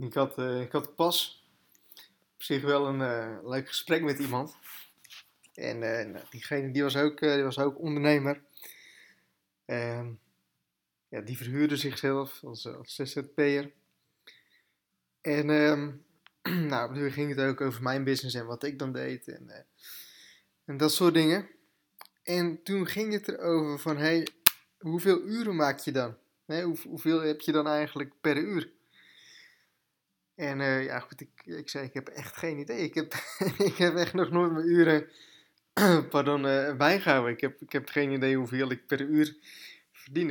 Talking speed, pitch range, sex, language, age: 160 wpm, 135-155 Hz, male, Dutch, 20-39